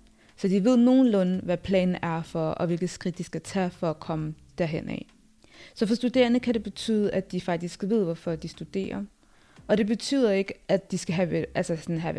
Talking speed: 210 wpm